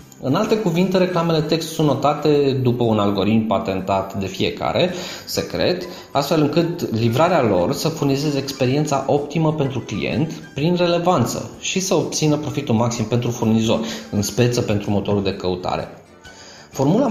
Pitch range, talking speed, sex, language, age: 110-150 Hz, 140 wpm, male, Romanian, 20-39